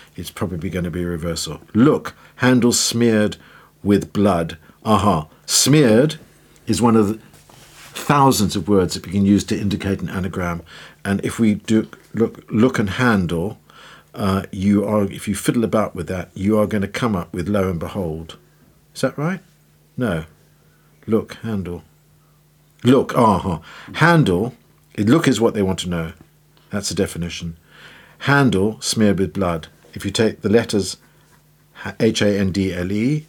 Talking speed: 155 wpm